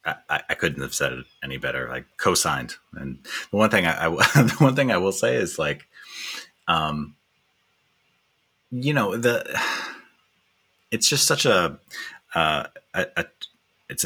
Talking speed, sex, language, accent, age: 155 wpm, male, English, American, 30-49